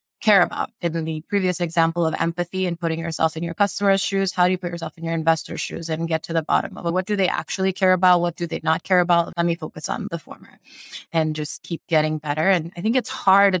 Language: English